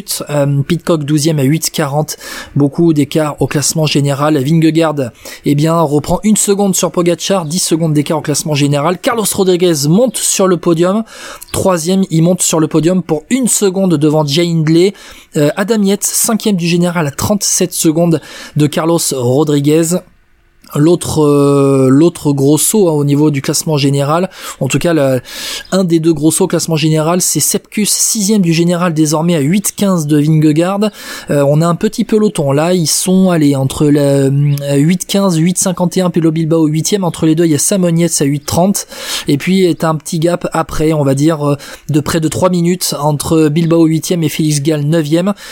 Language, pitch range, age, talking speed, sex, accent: French, 150-180 Hz, 20-39, 180 wpm, male, French